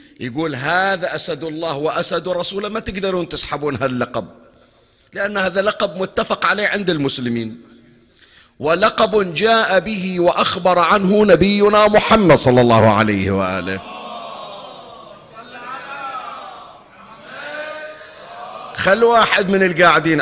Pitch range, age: 135-195 Hz, 50-69